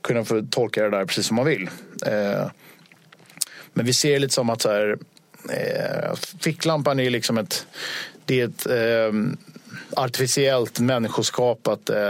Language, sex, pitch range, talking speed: Swedish, male, 115-150 Hz, 130 wpm